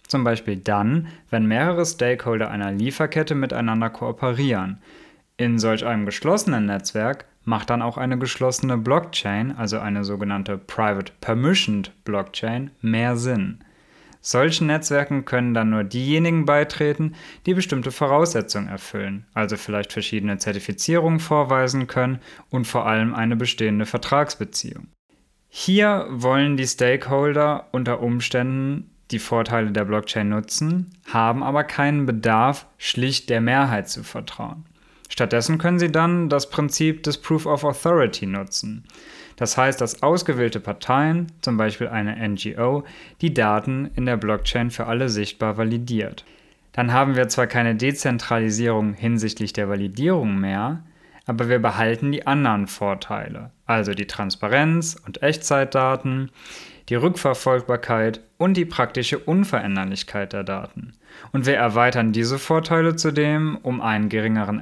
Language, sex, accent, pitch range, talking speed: German, male, German, 110-145 Hz, 130 wpm